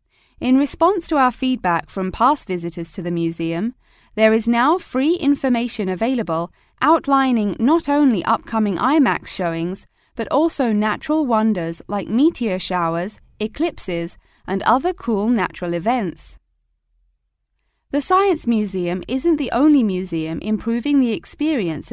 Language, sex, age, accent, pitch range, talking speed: English, female, 20-39, British, 180-275 Hz, 125 wpm